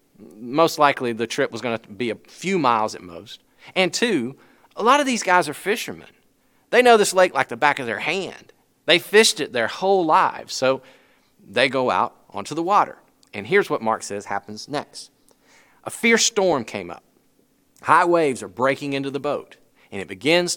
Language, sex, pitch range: English, male, 115-175 Hz